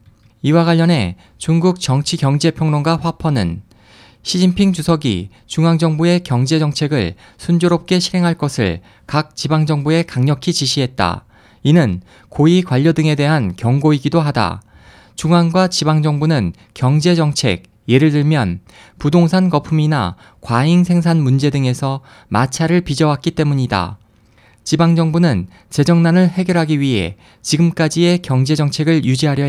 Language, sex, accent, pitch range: Korean, male, native, 115-165 Hz